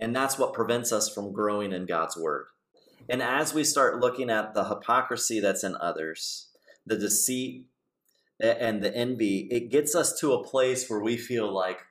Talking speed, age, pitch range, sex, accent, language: 180 wpm, 40-59, 95-130 Hz, male, American, English